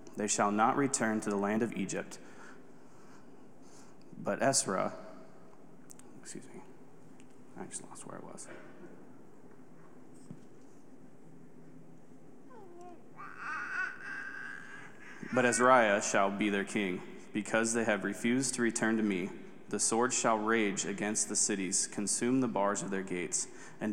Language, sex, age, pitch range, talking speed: English, male, 20-39, 100-120 Hz, 120 wpm